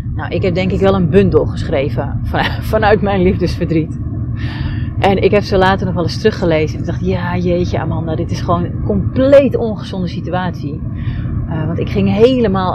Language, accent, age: Dutch, Dutch, 30-49